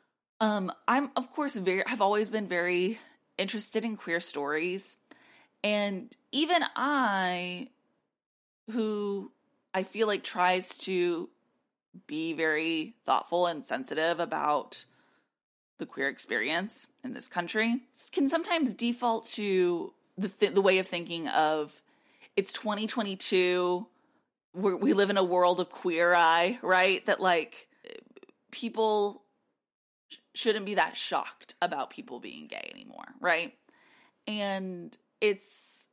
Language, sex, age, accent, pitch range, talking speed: English, female, 30-49, American, 180-250 Hz, 120 wpm